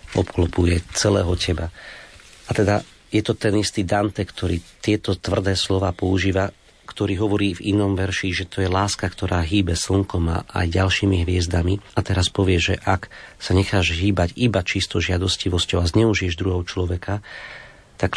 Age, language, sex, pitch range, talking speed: 40-59, Slovak, male, 90-100 Hz, 155 wpm